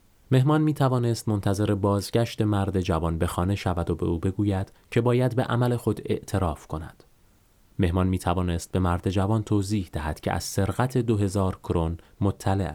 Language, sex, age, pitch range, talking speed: Persian, male, 30-49, 85-115 Hz, 165 wpm